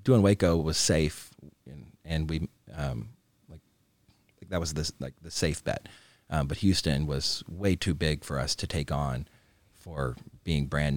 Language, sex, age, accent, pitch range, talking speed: English, male, 30-49, American, 75-90 Hz, 175 wpm